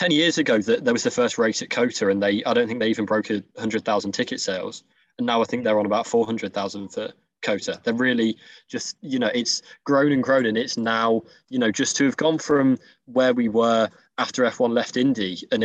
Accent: British